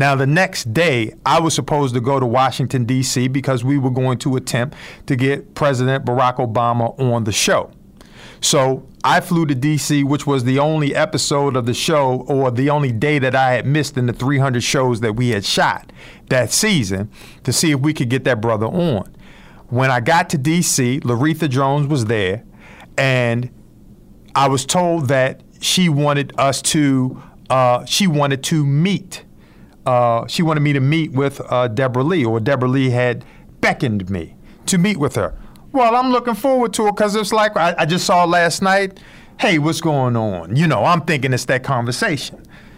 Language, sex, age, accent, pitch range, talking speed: English, male, 50-69, American, 130-165 Hz, 190 wpm